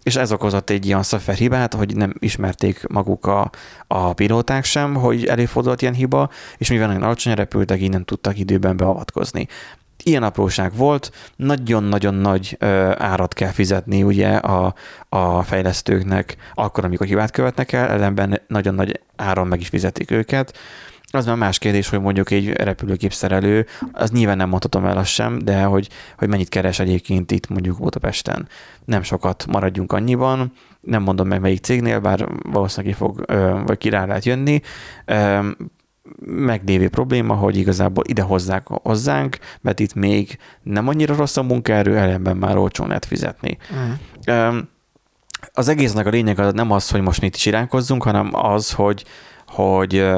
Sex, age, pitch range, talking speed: male, 30-49, 95-115 Hz, 155 wpm